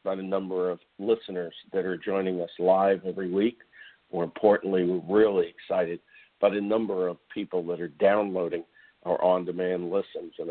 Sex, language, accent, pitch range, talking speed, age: male, English, American, 90-105 Hz, 165 wpm, 50-69